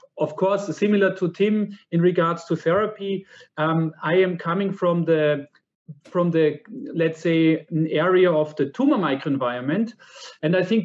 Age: 40-59